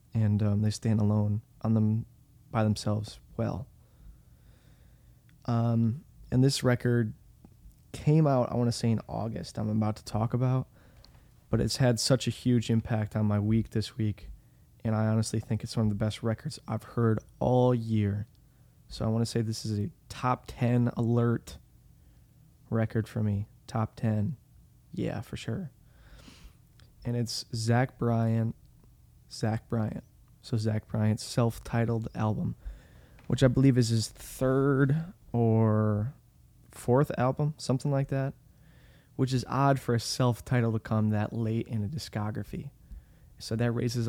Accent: American